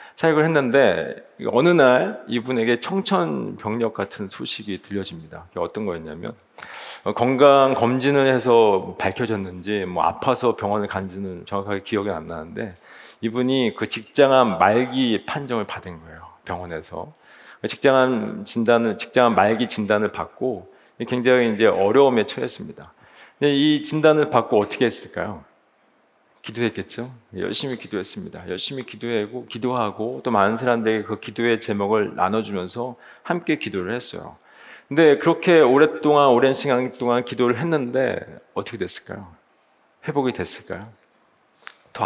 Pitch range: 105-140 Hz